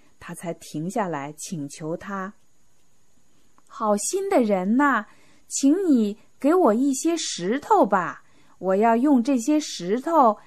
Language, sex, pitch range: Chinese, female, 165-270 Hz